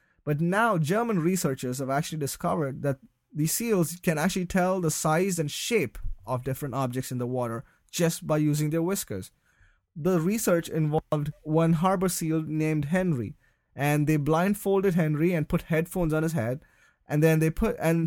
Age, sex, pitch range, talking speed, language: 20-39, male, 145-185 Hz, 160 wpm, English